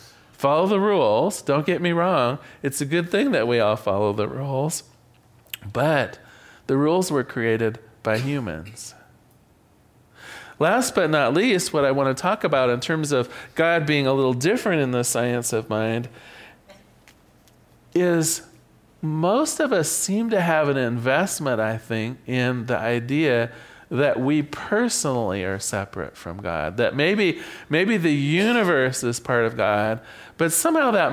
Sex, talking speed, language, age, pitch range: male, 155 wpm, English, 40-59, 115-155 Hz